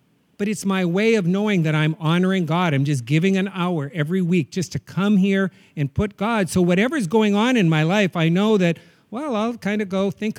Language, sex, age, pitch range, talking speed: English, male, 50-69, 160-225 Hz, 230 wpm